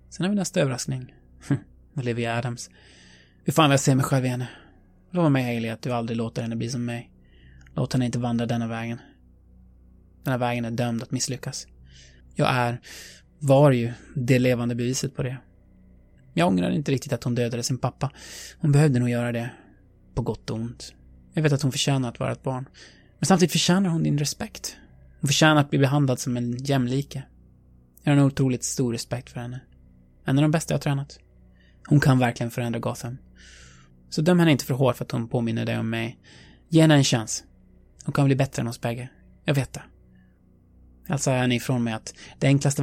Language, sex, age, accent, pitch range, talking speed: Swedish, male, 20-39, native, 90-135 Hz, 200 wpm